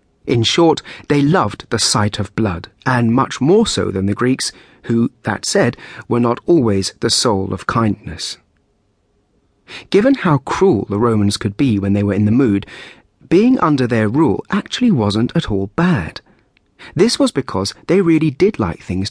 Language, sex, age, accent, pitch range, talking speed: English, male, 40-59, British, 100-145 Hz, 175 wpm